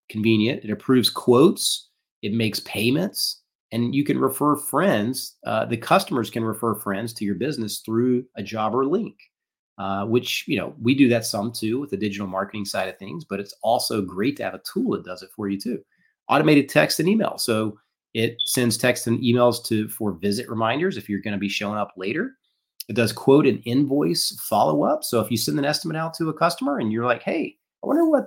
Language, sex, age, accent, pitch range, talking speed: English, male, 30-49, American, 105-140 Hz, 215 wpm